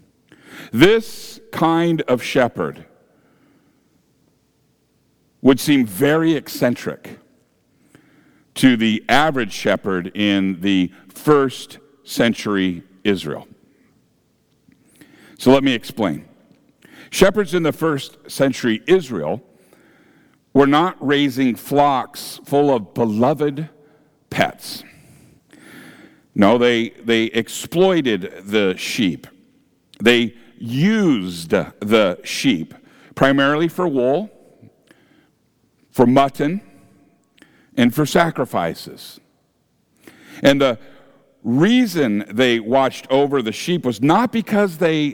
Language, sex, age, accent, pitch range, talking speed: English, male, 60-79, American, 125-180 Hz, 85 wpm